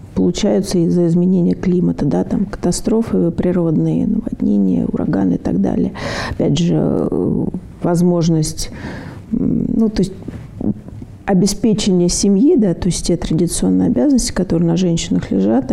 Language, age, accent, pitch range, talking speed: Russian, 40-59, native, 175-205 Hz, 120 wpm